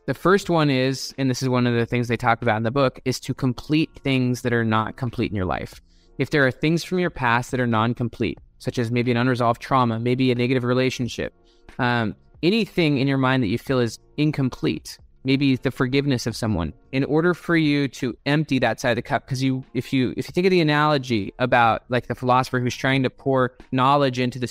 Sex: male